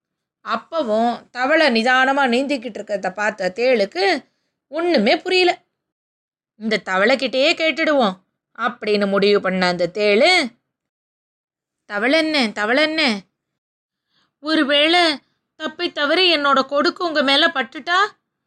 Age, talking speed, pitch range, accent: 20-39, 90 wpm, 230-320 Hz, native